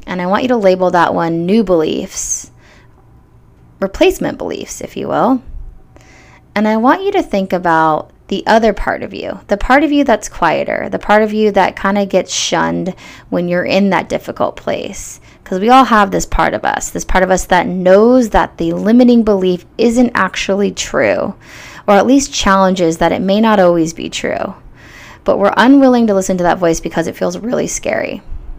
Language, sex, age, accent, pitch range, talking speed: English, female, 20-39, American, 170-210 Hz, 195 wpm